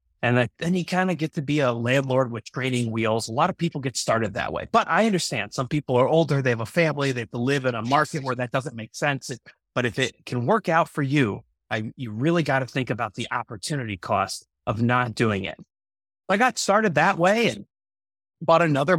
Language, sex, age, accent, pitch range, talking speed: English, male, 30-49, American, 115-155 Hz, 230 wpm